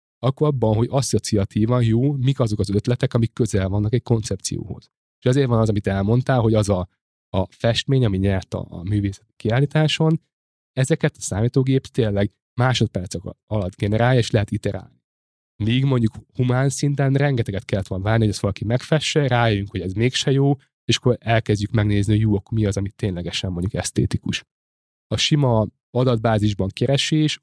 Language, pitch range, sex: Hungarian, 100-125 Hz, male